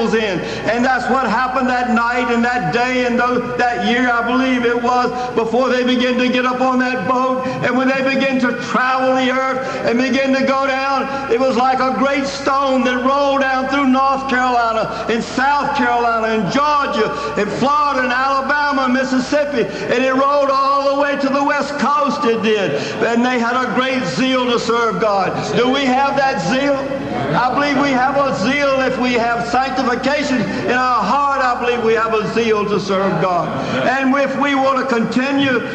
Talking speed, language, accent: 195 wpm, English, American